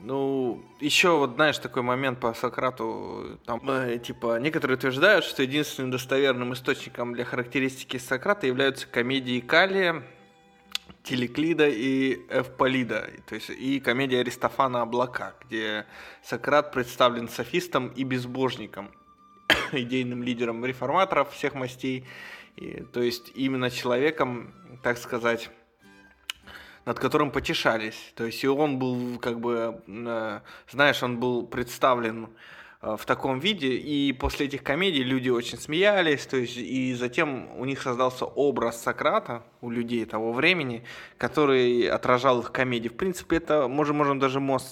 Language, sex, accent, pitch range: Russian, male, native, 120-135 Hz